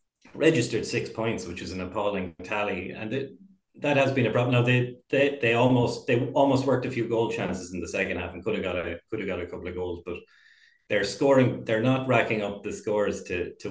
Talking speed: 230 wpm